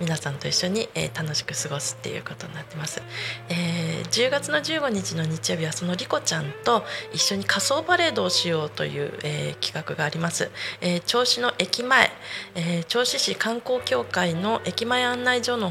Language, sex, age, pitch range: Japanese, female, 20-39, 160-205 Hz